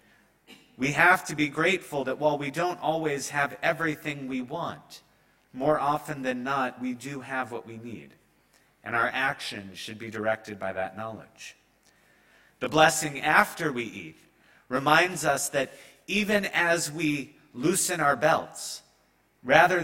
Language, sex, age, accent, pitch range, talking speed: English, male, 30-49, American, 120-150 Hz, 145 wpm